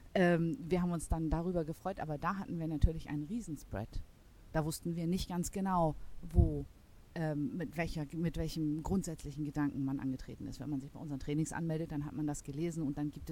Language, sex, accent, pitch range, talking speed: German, female, German, 145-185 Hz, 205 wpm